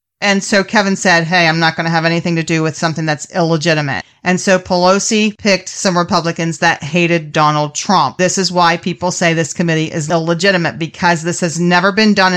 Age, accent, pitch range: 40-59, American, 175-220 Hz